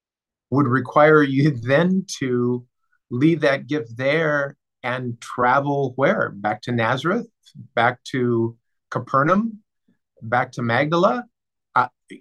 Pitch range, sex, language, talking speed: 120-160 Hz, male, English, 110 wpm